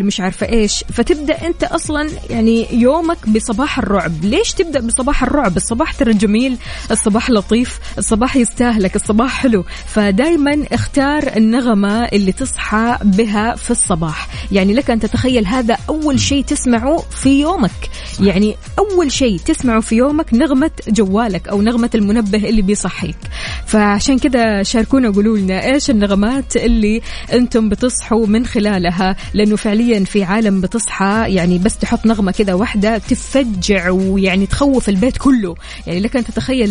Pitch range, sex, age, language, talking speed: 205-255 Hz, female, 20-39, Arabic, 135 wpm